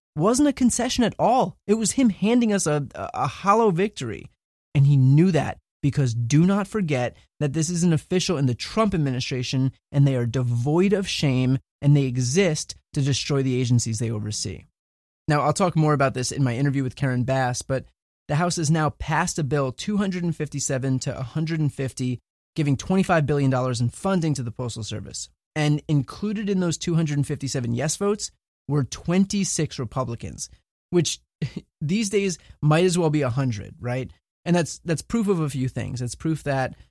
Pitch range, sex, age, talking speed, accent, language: 130-175 Hz, male, 20-39, 175 wpm, American, English